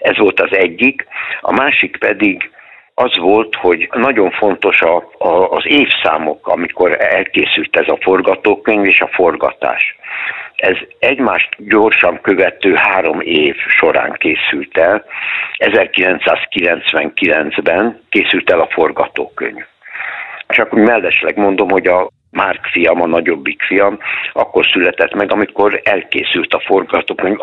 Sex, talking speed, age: male, 120 wpm, 60-79